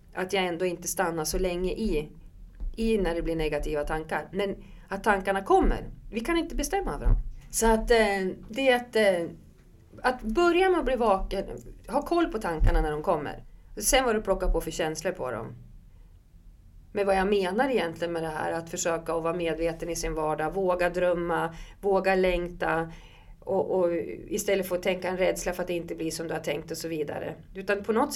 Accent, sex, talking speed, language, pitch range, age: Swedish, female, 200 wpm, English, 165-205 Hz, 40-59